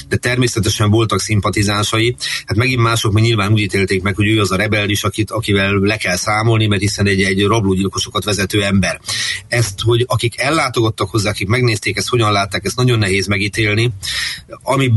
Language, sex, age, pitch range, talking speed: Hungarian, male, 30-49, 95-115 Hz, 180 wpm